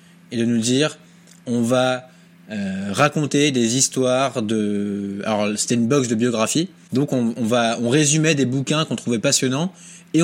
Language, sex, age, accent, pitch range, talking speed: French, male, 20-39, French, 130-175 Hz, 170 wpm